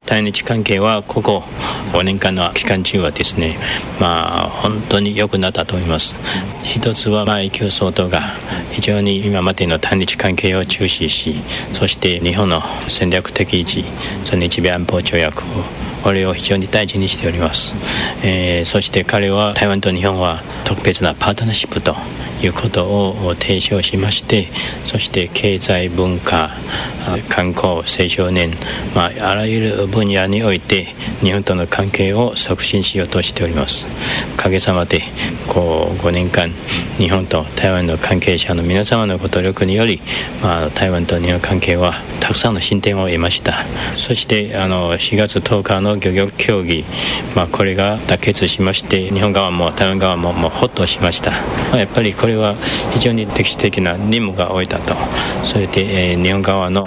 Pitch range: 90-105 Hz